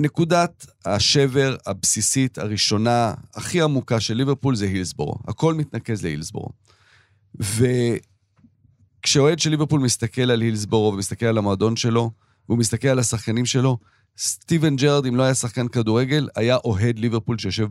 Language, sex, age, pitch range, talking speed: Hebrew, male, 40-59, 110-145 Hz, 130 wpm